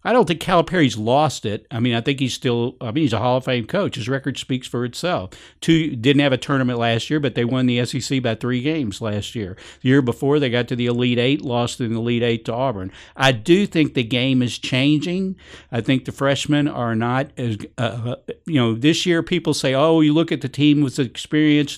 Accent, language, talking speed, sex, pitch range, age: American, English, 235 wpm, male, 115-145 Hz, 50-69